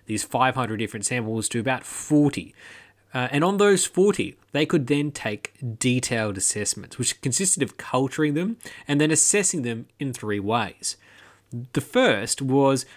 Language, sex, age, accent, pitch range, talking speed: English, male, 20-39, Australian, 115-150 Hz, 155 wpm